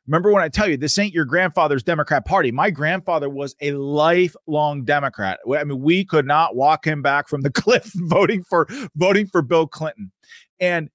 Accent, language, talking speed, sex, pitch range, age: American, English, 190 wpm, male, 135-180 Hz, 30-49